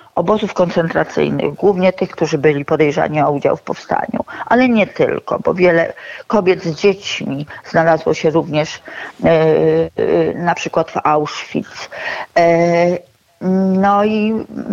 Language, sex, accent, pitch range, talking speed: Polish, female, native, 170-205 Hz, 115 wpm